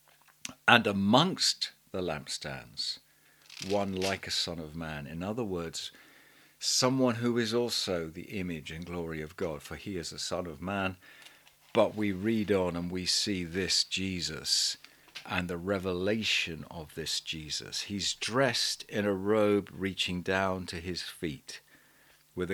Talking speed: 150 wpm